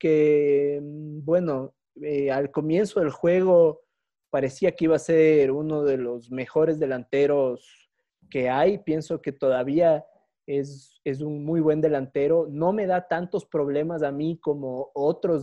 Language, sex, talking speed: Spanish, male, 145 wpm